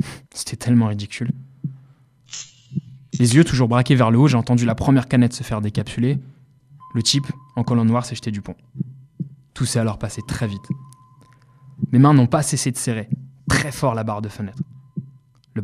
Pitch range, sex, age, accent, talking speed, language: 115-135 Hz, male, 20-39, French, 180 wpm, French